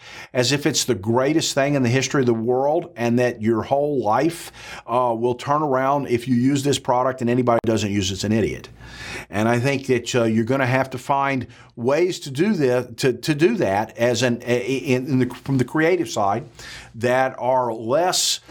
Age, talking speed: 50-69, 210 wpm